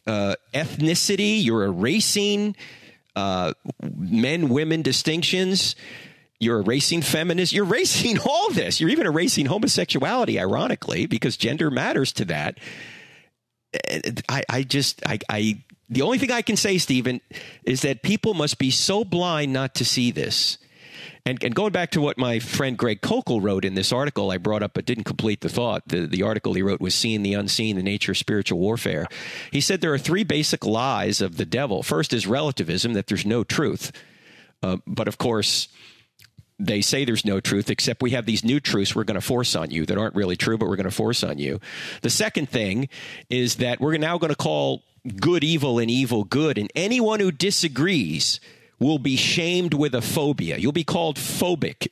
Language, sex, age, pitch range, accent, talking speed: English, male, 40-59, 110-160 Hz, American, 185 wpm